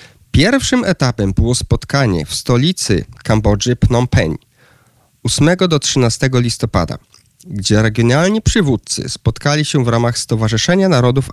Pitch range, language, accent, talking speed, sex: 115-145 Hz, Polish, native, 115 wpm, male